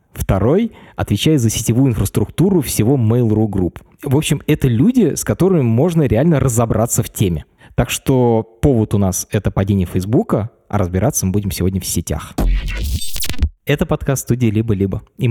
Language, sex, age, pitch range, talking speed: Russian, male, 20-39, 105-140 Hz, 155 wpm